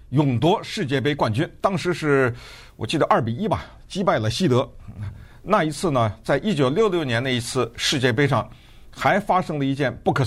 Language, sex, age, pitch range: Chinese, male, 50-69, 115-175 Hz